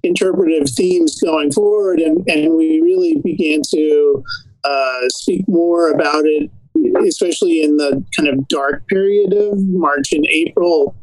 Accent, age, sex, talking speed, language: American, 50-69, male, 140 wpm, English